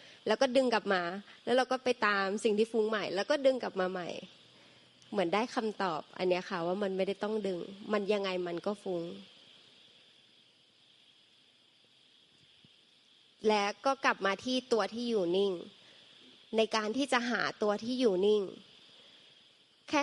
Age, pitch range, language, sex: 20-39, 190-235 Hz, Thai, female